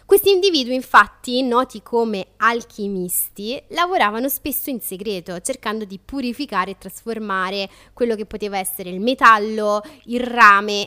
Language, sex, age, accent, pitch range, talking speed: Italian, female, 20-39, native, 200-245 Hz, 125 wpm